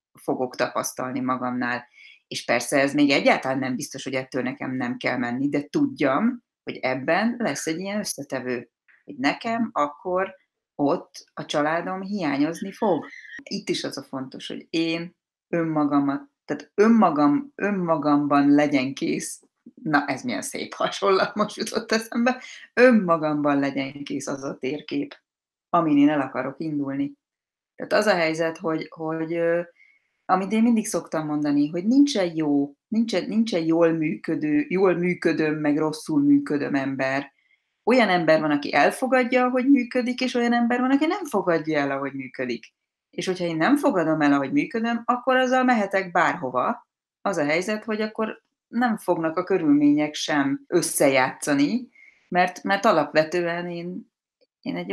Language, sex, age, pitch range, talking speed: Hungarian, female, 30-49, 145-225 Hz, 145 wpm